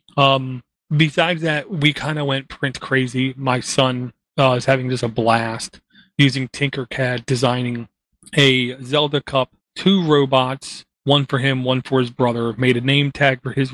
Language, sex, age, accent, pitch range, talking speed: English, male, 30-49, American, 125-150 Hz, 165 wpm